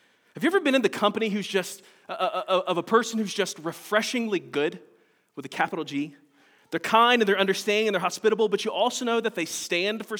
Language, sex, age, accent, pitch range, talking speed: English, male, 20-39, American, 190-235 Hz, 210 wpm